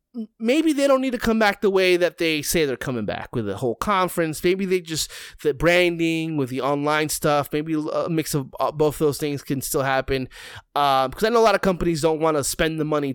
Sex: male